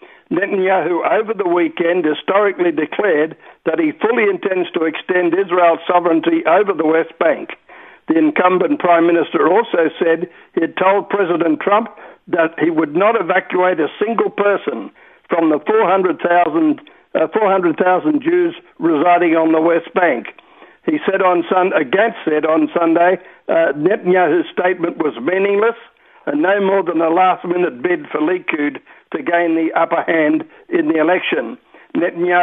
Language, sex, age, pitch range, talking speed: English, male, 60-79, 170-230 Hz, 145 wpm